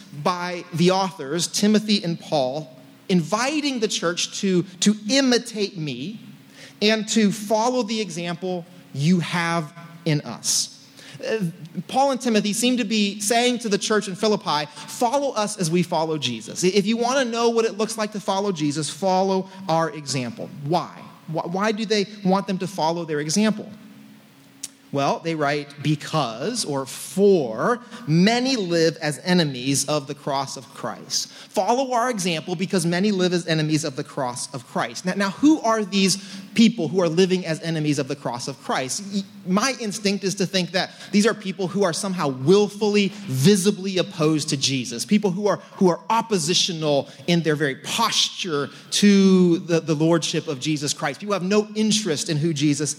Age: 30-49